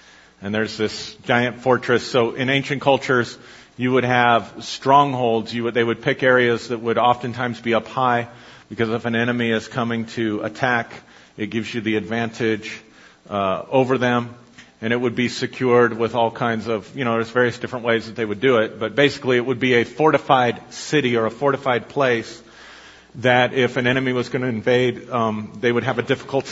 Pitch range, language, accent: 120-145 Hz, English, American